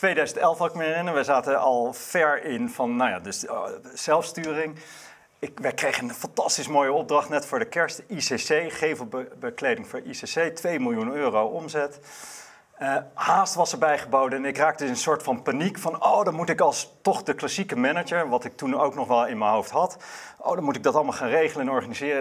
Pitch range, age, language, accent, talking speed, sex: 135-180 Hz, 40-59, Dutch, Dutch, 205 wpm, male